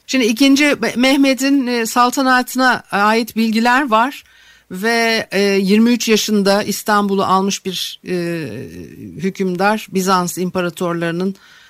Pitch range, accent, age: 160-225 Hz, native, 60-79